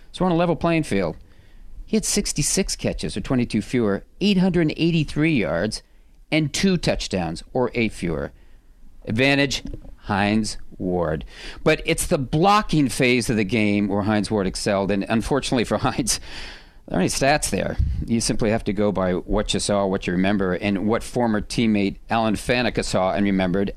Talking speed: 165 wpm